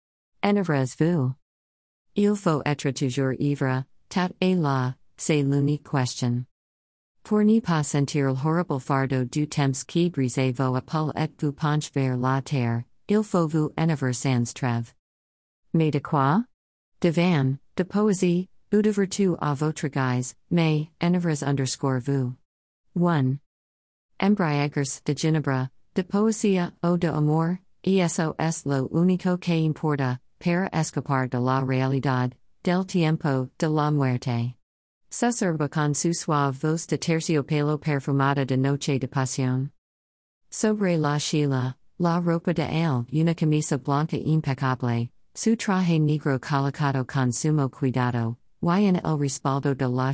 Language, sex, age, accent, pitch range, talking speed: English, female, 50-69, American, 130-165 Hz, 135 wpm